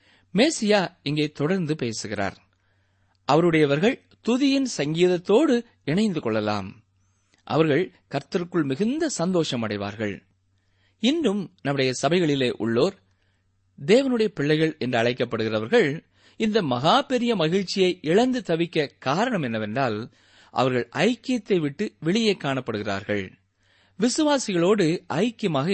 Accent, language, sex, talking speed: native, Tamil, male, 85 wpm